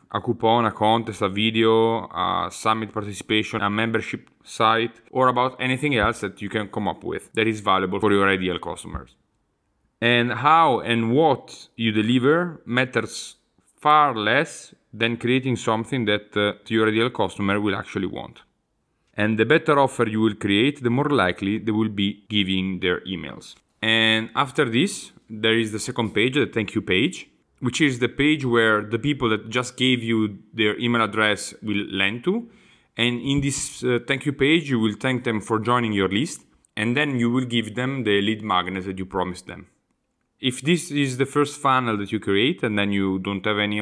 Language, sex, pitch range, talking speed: English, male, 100-120 Hz, 190 wpm